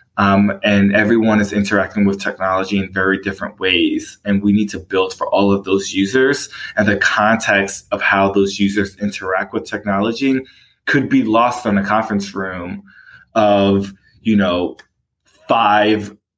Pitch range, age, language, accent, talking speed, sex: 95-110 Hz, 20-39, English, American, 155 wpm, male